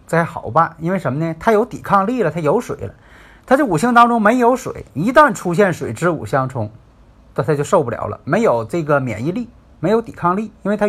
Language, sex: Chinese, male